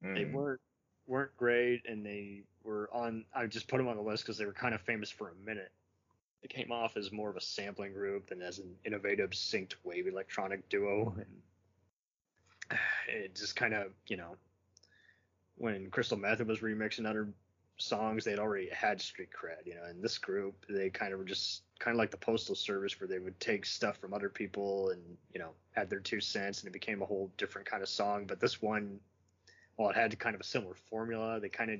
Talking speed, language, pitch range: 215 wpm, English, 95-120 Hz